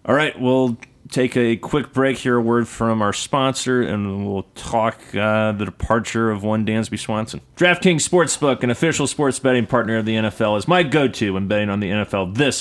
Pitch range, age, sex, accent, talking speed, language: 110-135 Hz, 30-49, male, American, 195 wpm, English